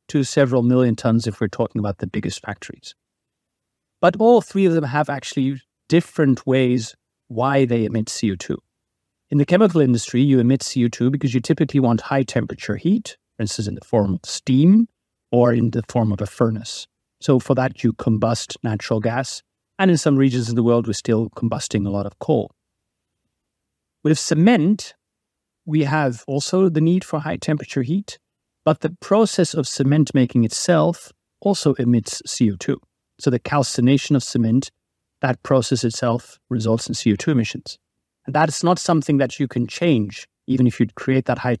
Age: 30-49